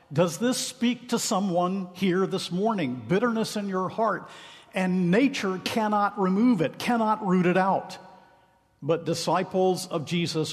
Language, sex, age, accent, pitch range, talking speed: English, male, 50-69, American, 145-190 Hz, 140 wpm